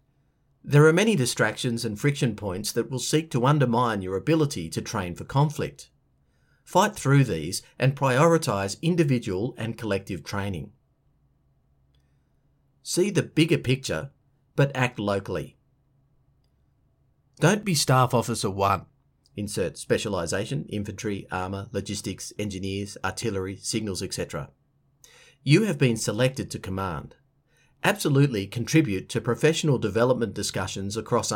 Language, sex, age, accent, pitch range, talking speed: English, male, 40-59, Australian, 105-140 Hz, 115 wpm